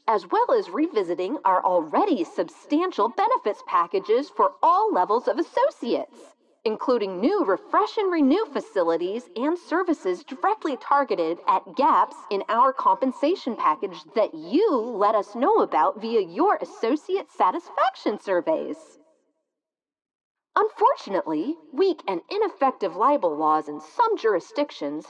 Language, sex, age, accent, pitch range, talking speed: English, female, 40-59, American, 250-415 Hz, 120 wpm